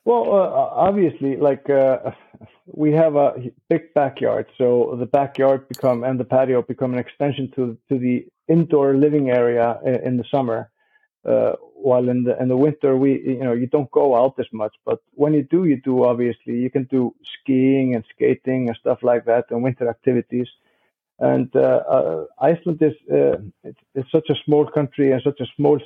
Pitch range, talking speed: 125-145 Hz, 190 wpm